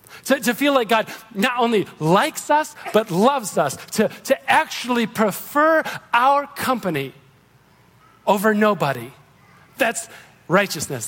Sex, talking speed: male, 120 wpm